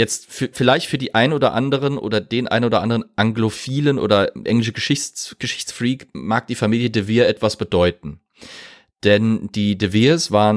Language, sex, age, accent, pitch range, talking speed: German, male, 30-49, German, 95-115 Hz, 170 wpm